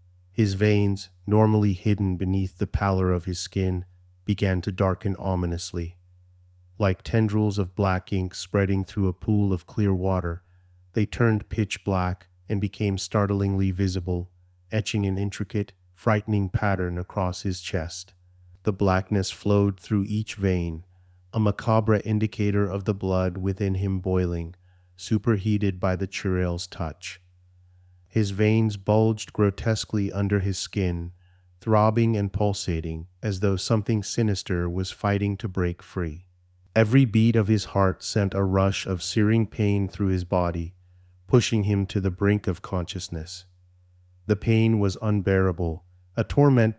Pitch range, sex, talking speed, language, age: 90-105 Hz, male, 140 wpm, English, 30-49